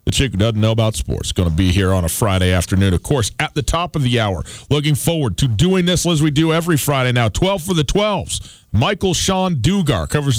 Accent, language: American, English